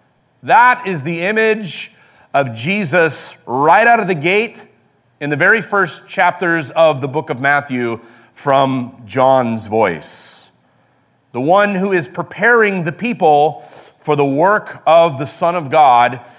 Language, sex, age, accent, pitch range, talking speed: English, male, 40-59, American, 135-200 Hz, 145 wpm